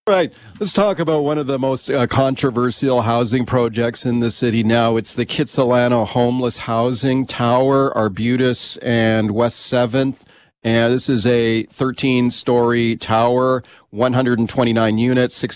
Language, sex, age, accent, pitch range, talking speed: English, male, 40-59, American, 115-125 Hz, 135 wpm